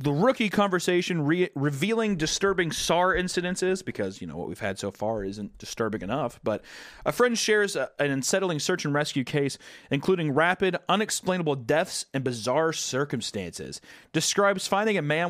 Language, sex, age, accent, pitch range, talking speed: English, male, 30-49, American, 110-175 Hz, 155 wpm